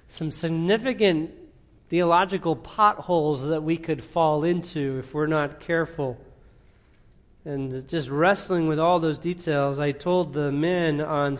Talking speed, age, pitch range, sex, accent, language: 130 wpm, 40-59, 135-160 Hz, male, American, English